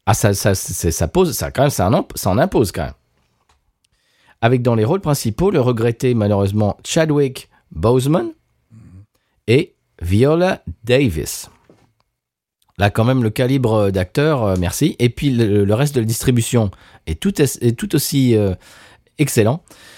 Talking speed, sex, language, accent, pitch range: 150 wpm, male, French, French, 105-145 Hz